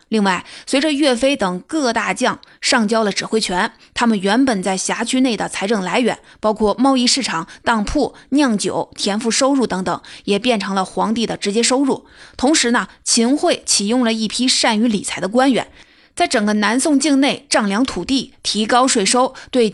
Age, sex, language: 20-39, female, Chinese